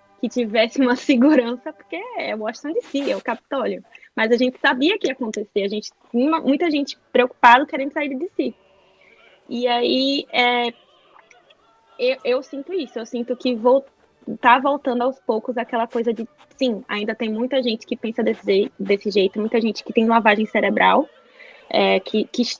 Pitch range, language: 220-270 Hz, Portuguese